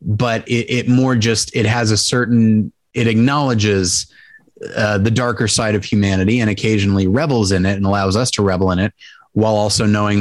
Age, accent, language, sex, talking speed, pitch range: 20-39, American, English, male, 190 wpm, 100-120 Hz